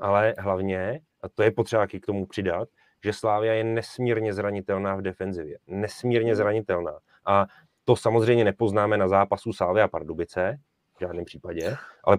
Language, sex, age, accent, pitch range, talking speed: Czech, male, 30-49, native, 100-115 Hz, 150 wpm